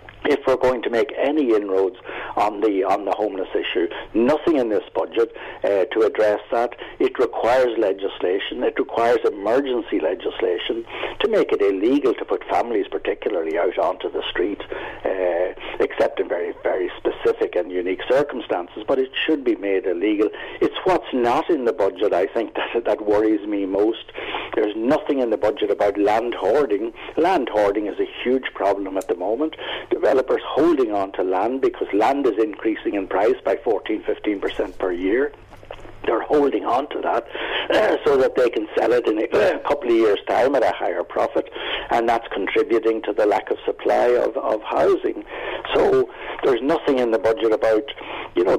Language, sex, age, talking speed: English, male, 60-79, 175 wpm